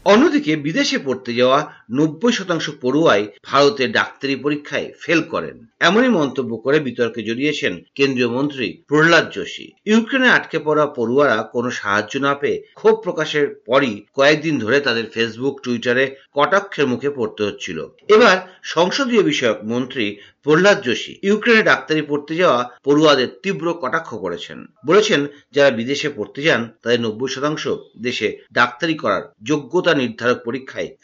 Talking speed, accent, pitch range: 100 wpm, native, 125-180 Hz